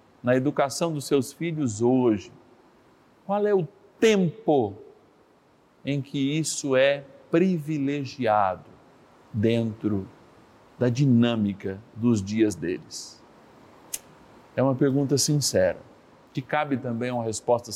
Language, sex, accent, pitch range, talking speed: Portuguese, male, Brazilian, 120-170 Hz, 100 wpm